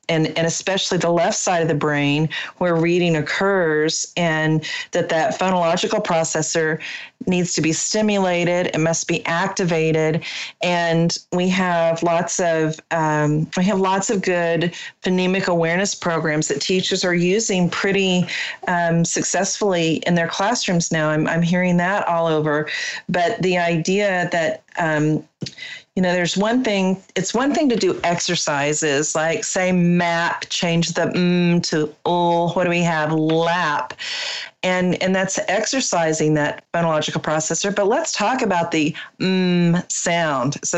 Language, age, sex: English, 40-59, female